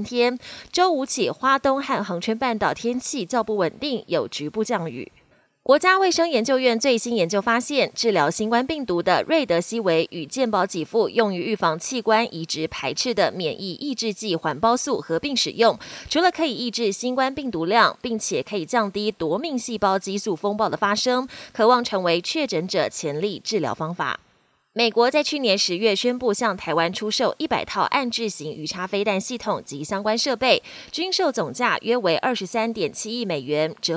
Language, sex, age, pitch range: Chinese, female, 20-39, 190-250 Hz